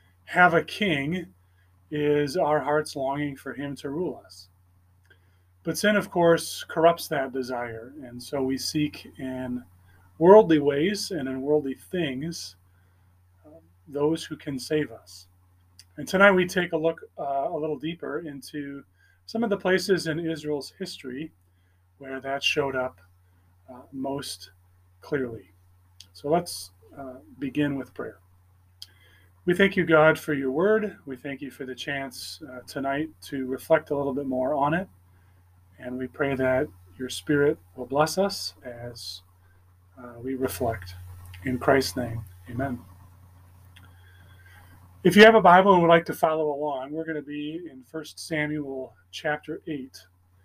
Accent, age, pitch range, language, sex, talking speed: American, 30-49, 90-155 Hz, English, male, 150 wpm